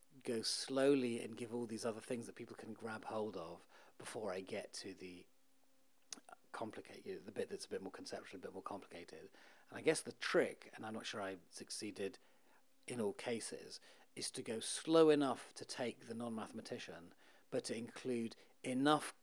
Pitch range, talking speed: 100-130 Hz, 180 wpm